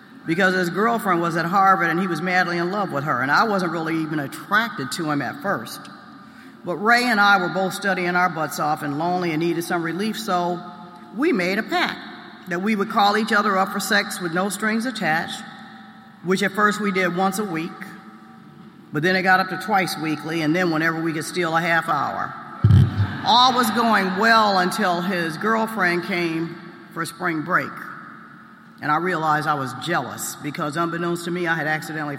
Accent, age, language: American, 50-69, English